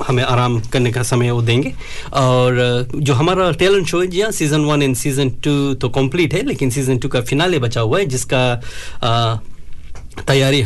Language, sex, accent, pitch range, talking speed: Hindi, male, native, 125-145 Hz, 175 wpm